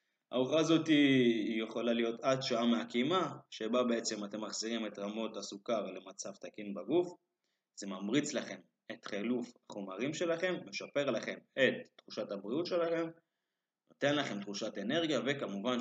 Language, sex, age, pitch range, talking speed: Hebrew, male, 20-39, 105-130 Hz, 135 wpm